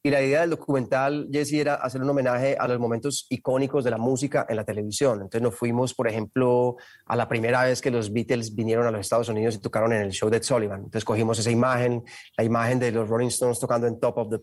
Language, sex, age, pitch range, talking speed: Spanish, male, 30-49, 115-130 Hz, 245 wpm